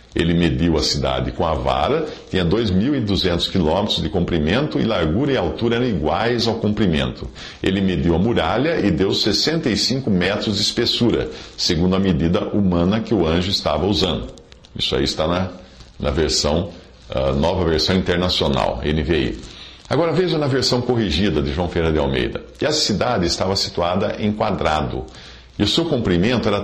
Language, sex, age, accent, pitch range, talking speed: English, male, 50-69, Brazilian, 75-110 Hz, 160 wpm